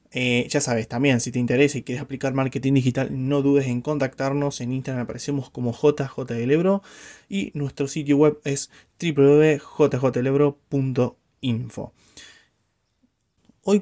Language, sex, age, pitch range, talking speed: Spanish, male, 20-39, 135-185 Hz, 120 wpm